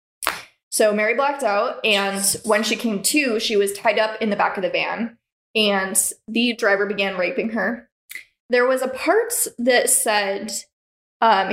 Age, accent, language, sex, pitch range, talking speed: 10-29, American, English, female, 190-230 Hz, 165 wpm